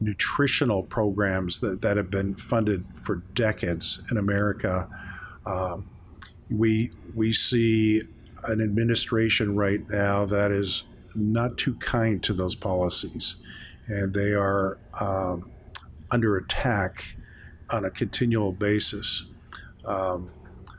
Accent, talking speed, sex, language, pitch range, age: American, 110 wpm, male, English, 95-110 Hz, 50-69